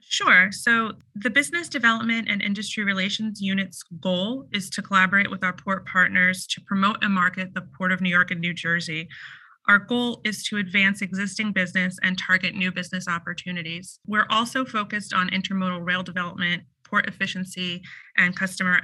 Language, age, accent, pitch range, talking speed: English, 30-49, American, 180-205 Hz, 165 wpm